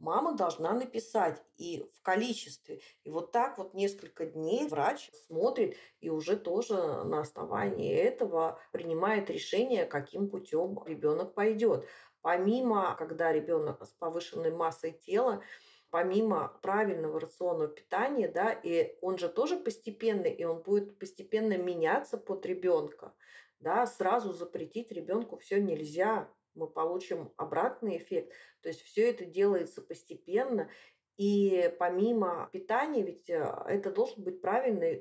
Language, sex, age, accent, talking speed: Russian, female, 30-49, native, 125 wpm